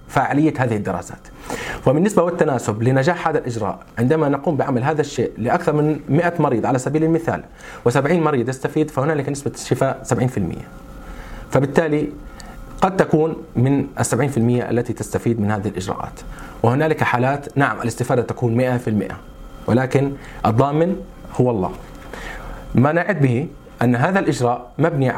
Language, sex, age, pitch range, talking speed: Arabic, male, 40-59, 120-155 Hz, 130 wpm